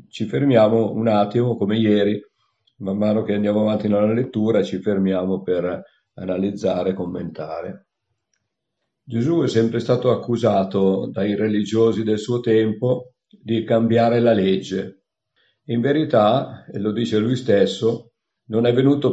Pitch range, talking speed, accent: 100-120 Hz, 130 wpm, native